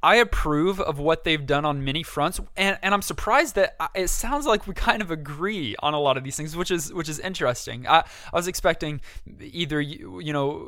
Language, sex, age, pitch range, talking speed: English, male, 20-39, 135-165 Hz, 225 wpm